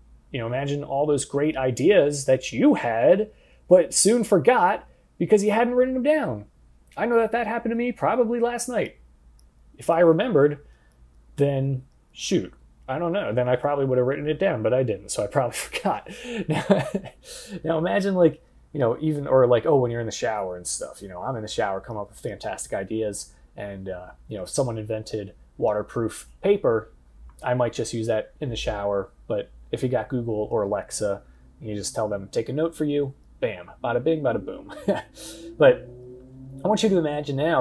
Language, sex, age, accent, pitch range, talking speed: English, male, 20-39, American, 100-155 Hz, 195 wpm